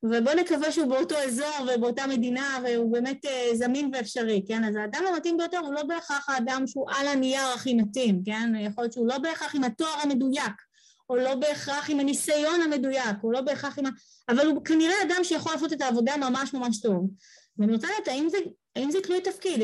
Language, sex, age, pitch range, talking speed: Hebrew, female, 20-39, 235-310 Hz, 195 wpm